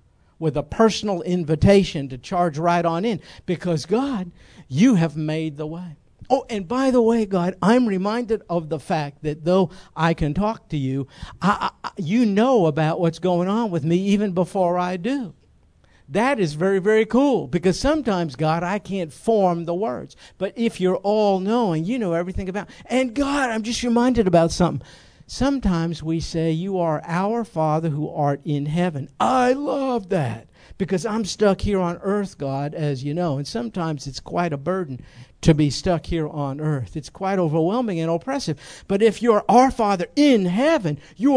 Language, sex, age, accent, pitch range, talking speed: English, male, 50-69, American, 160-220 Hz, 185 wpm